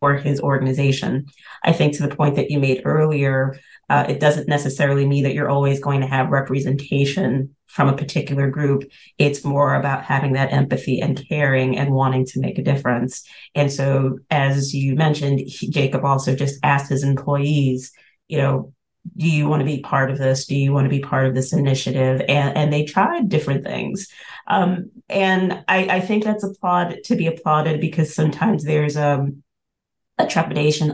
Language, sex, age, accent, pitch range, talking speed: English, female, 30-49, American, 135-155 Hz, 180 wpm